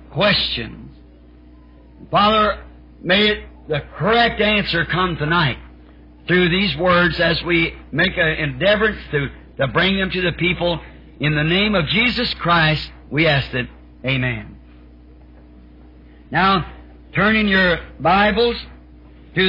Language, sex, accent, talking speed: English, male, American, 120 wpm